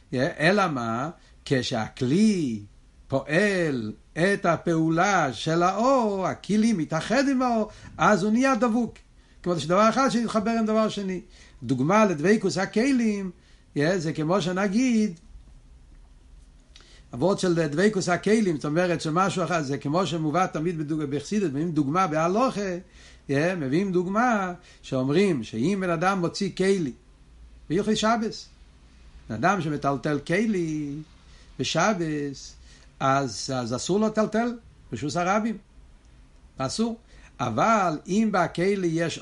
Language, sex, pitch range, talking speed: Hebrew, male, 135-205 Hz, 110 wpm